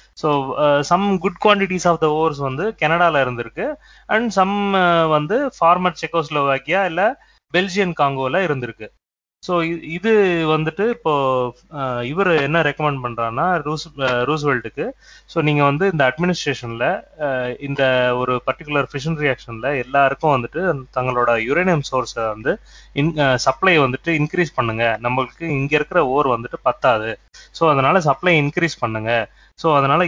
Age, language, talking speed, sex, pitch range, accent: 20-39, Tamil, 145 wpm, male, 125-170 Hz, native